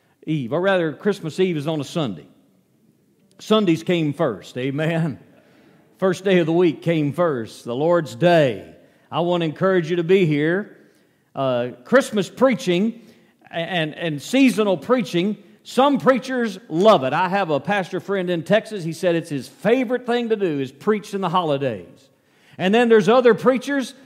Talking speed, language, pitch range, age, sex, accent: 170 wpm, English, 165-235 Hz, 50-69, male, American